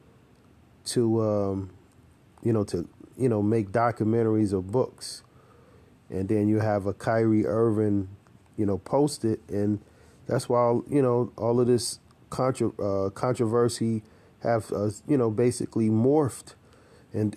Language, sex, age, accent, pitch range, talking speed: English, male, 40-59, American, 100-120 Hz, 140 wpm